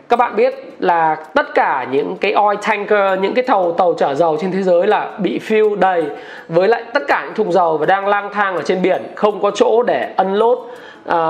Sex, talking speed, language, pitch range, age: male, 225 wpm, Vietnamese, 195-245 Hz, 20-39